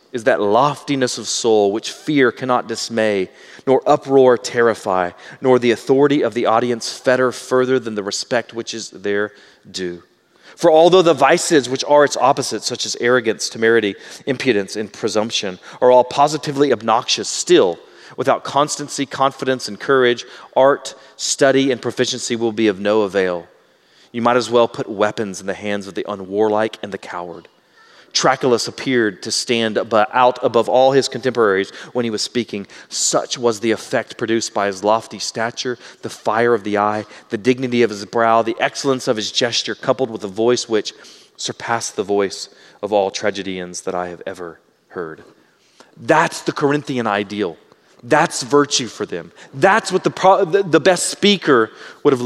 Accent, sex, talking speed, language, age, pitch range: American, male, 170 wpm, English, 30-49, 105-135 Hz